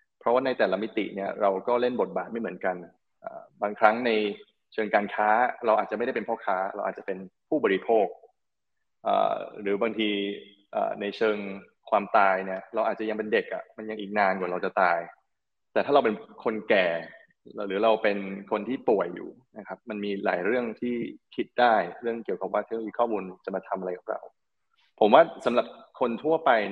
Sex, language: male, Thai